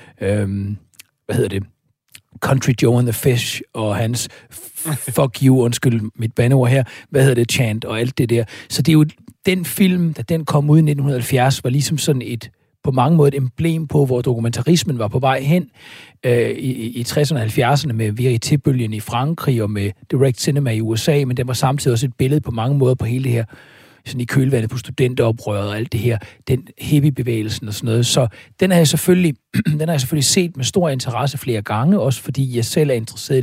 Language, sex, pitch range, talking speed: Danish, male, 120-150 Hz, 210 wpm